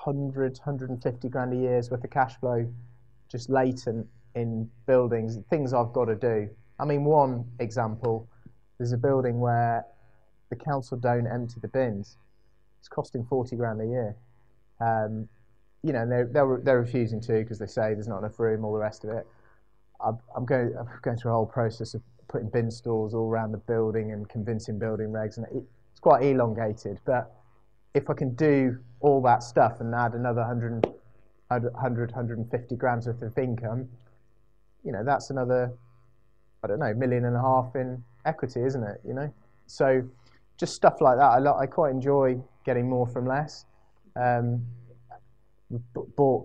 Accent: British